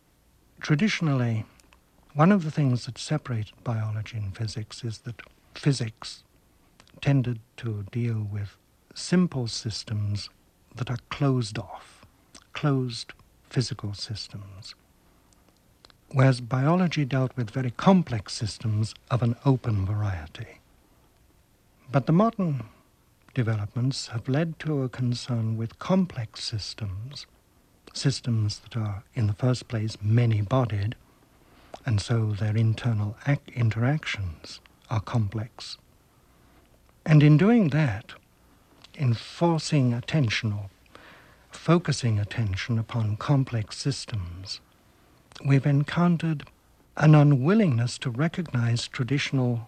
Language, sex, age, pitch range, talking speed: English, male, 60-79, 110-140 Hz, 105 wpm